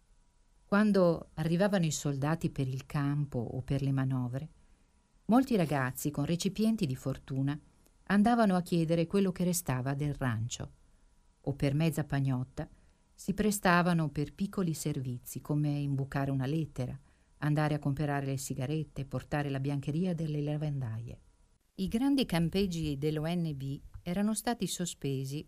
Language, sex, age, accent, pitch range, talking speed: Italian, female, 50-69, native, 130-170 Hz, 130 wpm